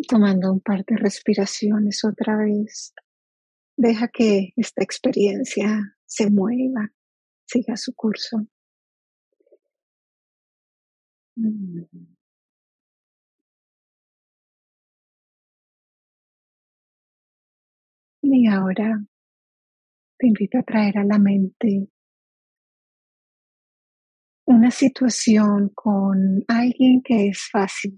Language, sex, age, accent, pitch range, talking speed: English, female, 40-59, American, 205-235 Hz, 70 wpm